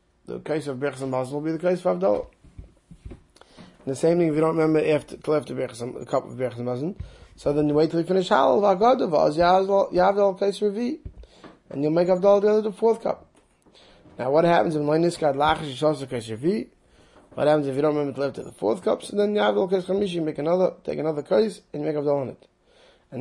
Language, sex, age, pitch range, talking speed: English, male, 20-39, 140-180 Hz, 200 wpm